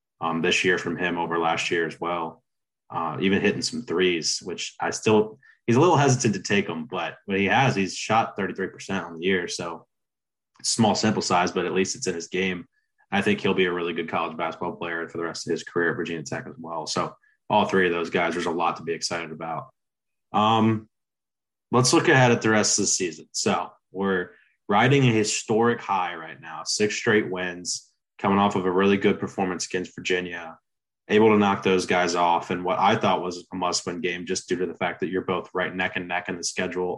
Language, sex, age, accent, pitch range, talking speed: English, male, 20-39, American, 90-105 Hz, 225 wpm